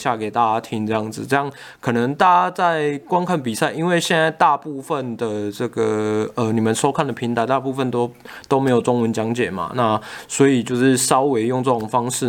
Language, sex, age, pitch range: Chinese, male, 20-39, 115-145 Hz